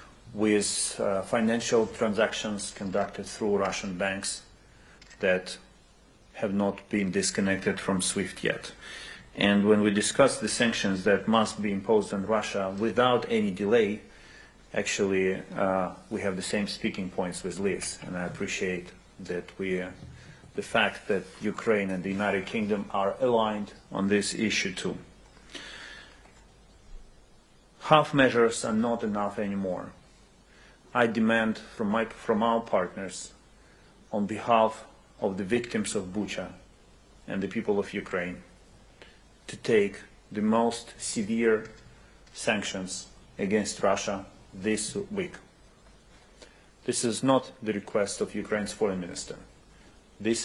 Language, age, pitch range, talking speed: English, 40-59, 95-115 Hz, 125 wpm